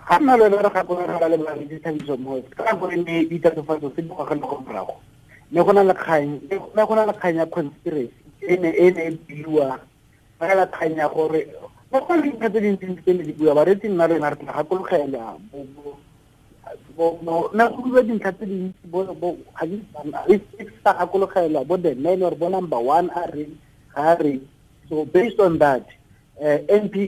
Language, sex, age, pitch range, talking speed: English, male, 50-69, 145-180 Hz, 65 wpm